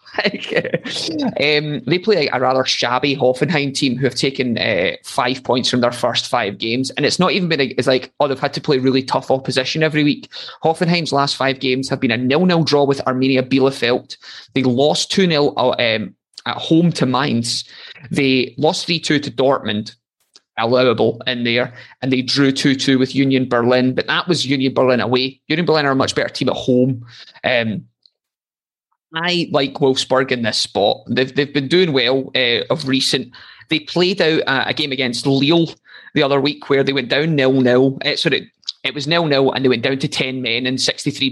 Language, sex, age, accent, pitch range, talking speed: English, male, 20-39, British, 130-145 Hz, 190 wpm